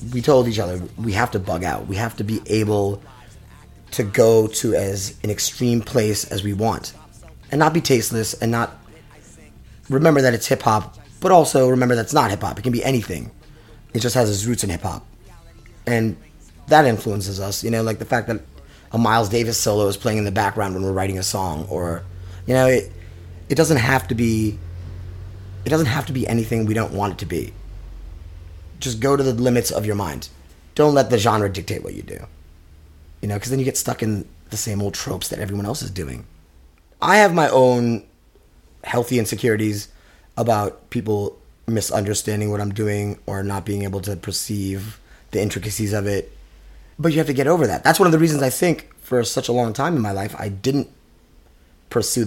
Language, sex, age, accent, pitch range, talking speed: English, male, 20-39, American, 95-120 Hz, 205 wpm